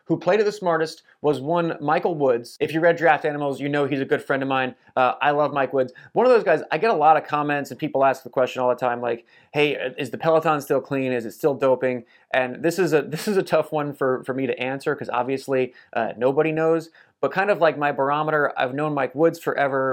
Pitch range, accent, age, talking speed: 130-155 Hz, American, 30-49, 260 wpm